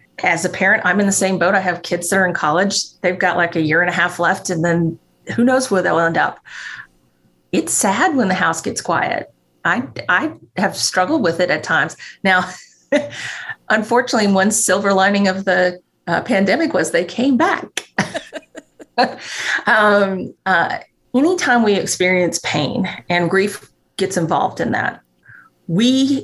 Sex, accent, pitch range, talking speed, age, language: female, American, 165-205 Hz, 165 wpm, 30-49, English